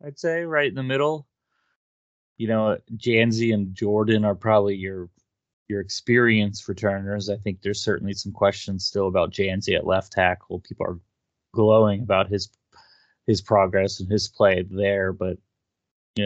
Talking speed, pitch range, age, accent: 155 wpm, 100-110 Hz, 20-39, American